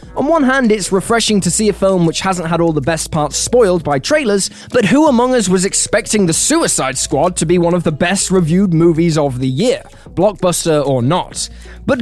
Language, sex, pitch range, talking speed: English, male, 155-225 Hz, 210 wpm